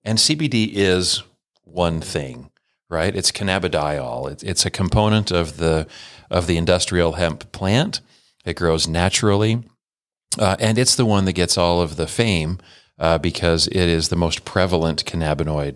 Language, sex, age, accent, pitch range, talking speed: English, male, 40-59, American, 80-105 Hz, 155 wpm